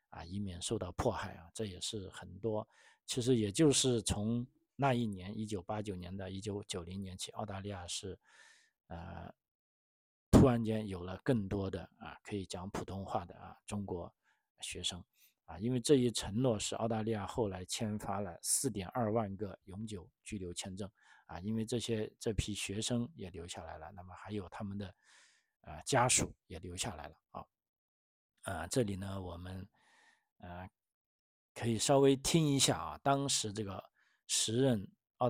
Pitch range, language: 95-120 Hz, Chinese